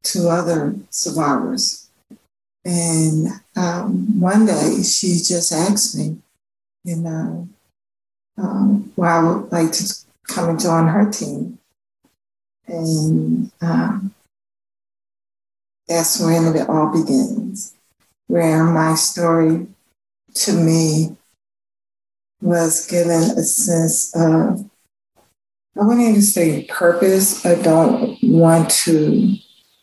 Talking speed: 105 wpm